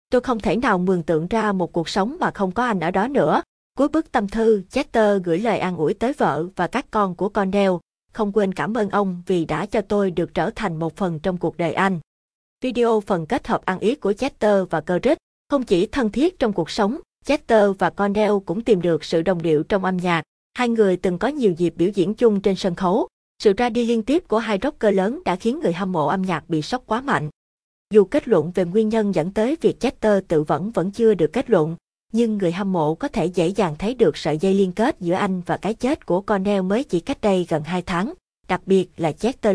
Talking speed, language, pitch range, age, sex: 245 wpm, Vietnamese, 180-225 Hz, 20-39, female